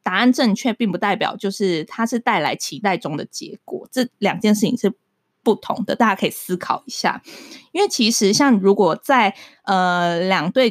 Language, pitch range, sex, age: Chinese, 185-240 Hz, female, 20-39